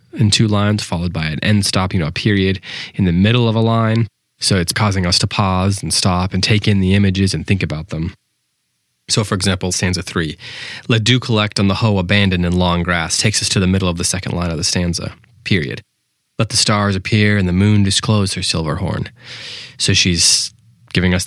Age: 20-39